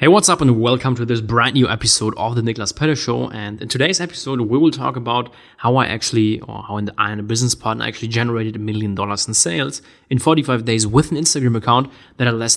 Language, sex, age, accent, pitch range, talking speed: English, male, 20-39, German, 105-125 Hz, 235 wpm